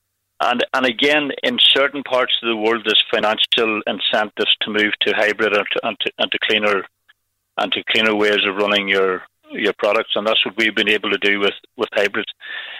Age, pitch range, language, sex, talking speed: 60-79, 100-115 Hz, English, male, 200 wpm